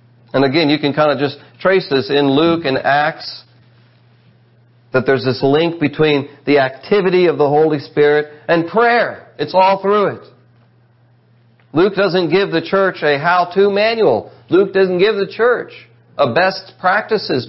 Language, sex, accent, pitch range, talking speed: English, male, American, 120-170 Hz, 160 wpm